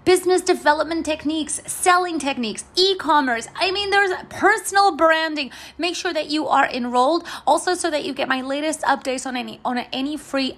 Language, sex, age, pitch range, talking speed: English, female, 30-49, 230-310 Hz, 165 wpm